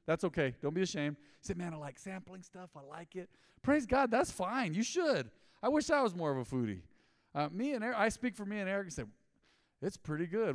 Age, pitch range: 40-59, 125-185 Hz